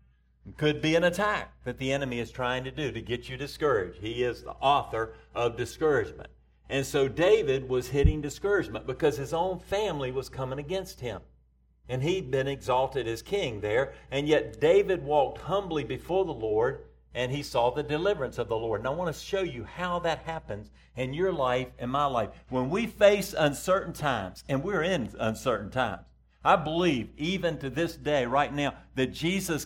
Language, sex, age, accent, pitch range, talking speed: English, male, 50-69, American, 120-160 Hz, 190 wpm